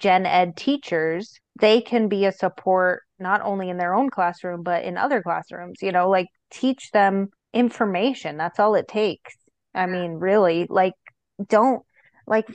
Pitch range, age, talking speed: 180-210 Hz, 30-49, 165 wpm